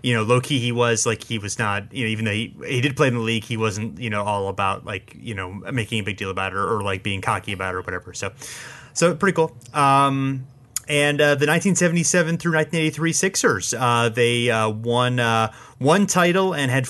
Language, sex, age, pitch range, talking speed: English, male, 30-49, 120-155 Hz, 230 wpm